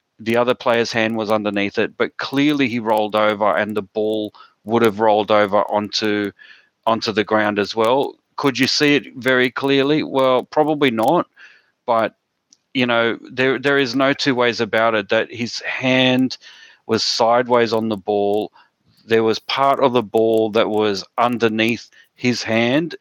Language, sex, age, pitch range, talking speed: English, male, 30-49, 110-125 Hz, 165 wpm